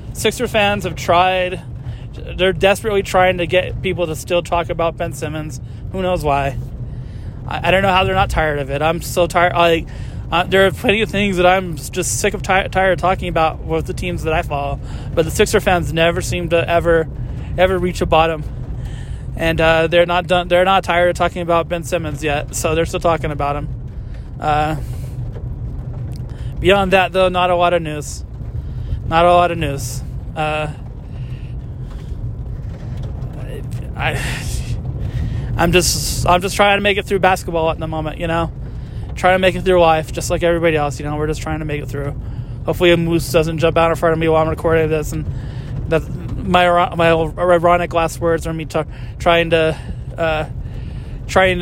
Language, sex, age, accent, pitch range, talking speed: English, male, 20-39, American, 130-175 Hz, 190 wpm